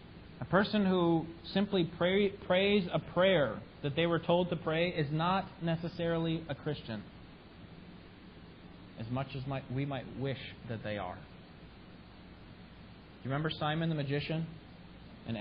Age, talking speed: 40-59, 140 wpm